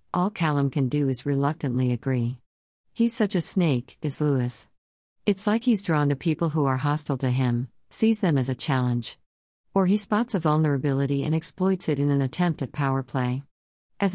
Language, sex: English, female